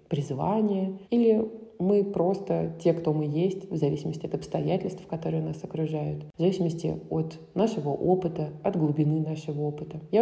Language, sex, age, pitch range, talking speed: Russian, female, 20-39, 145-175 Hz, 145 wpm